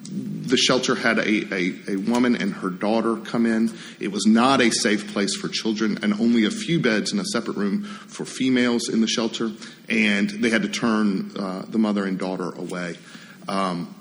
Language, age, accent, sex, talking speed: English, 40-59, American, male, 195 wpm